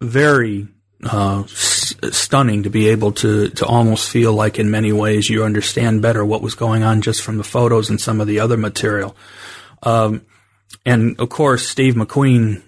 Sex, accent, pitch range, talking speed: male, American, 105-120 Hz, 180 wpm